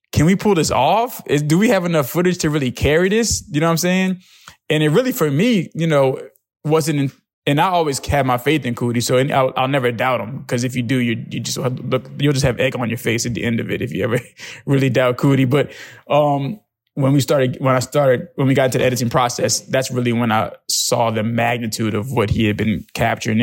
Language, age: English, 20-39